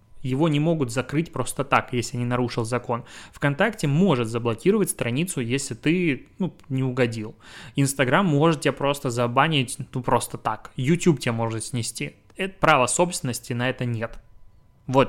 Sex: male